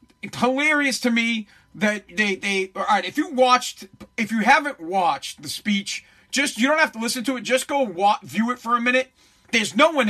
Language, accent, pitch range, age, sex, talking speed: English, American, 215-265 Hz, 40-59, male, 210 wpm